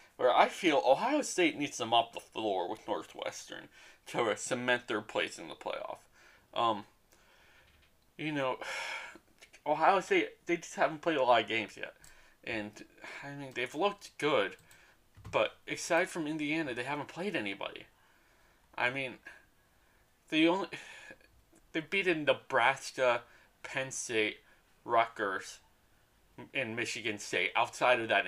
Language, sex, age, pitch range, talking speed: English, male, 20-39, 105-165 Hz, 135 wpm